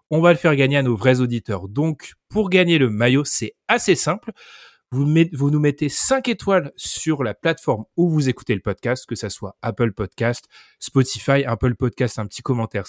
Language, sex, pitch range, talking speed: French, male, 120-155 Hz, 195 wpm